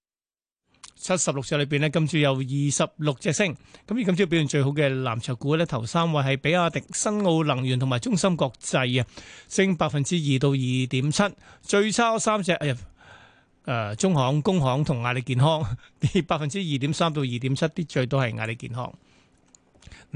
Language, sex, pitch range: Chinese, male, 140-175 Hz